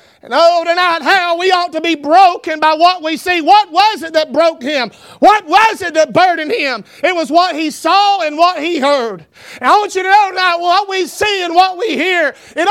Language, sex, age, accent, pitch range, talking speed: English, male, 40-59, American, 295-390 Hz, 230 wpm